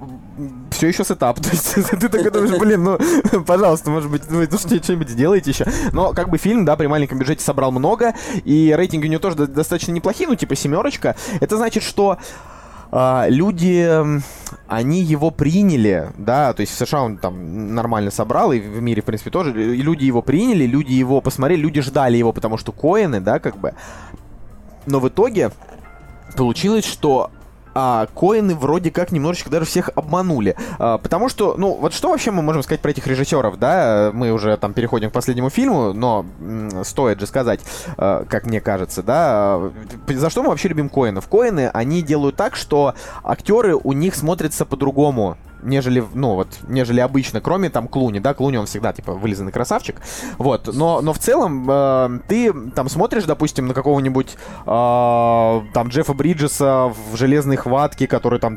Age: 20-39